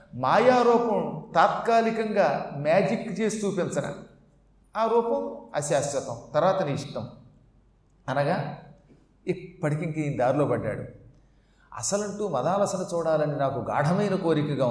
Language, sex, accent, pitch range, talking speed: Telugu, male, native, 135-210 Hz, 80 wpm